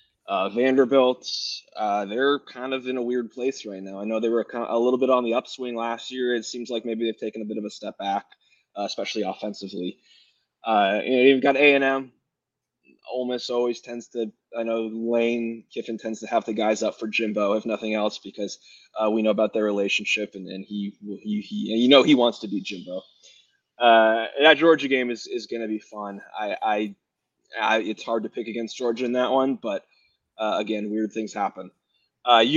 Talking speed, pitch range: 210 wpm, 110-130 Hz